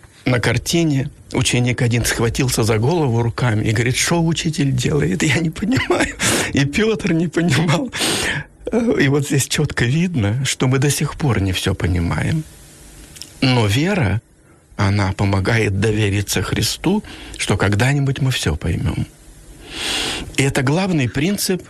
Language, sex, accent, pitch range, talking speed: Ukrainian, male, native, 105-140 Hz, 135 wpm